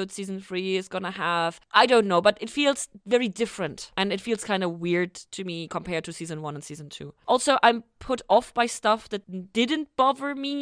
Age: 20-39